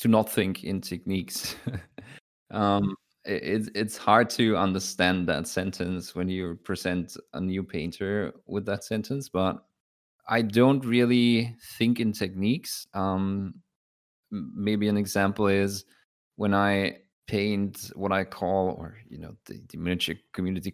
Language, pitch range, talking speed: English, 95-105 Hz, 135 wpm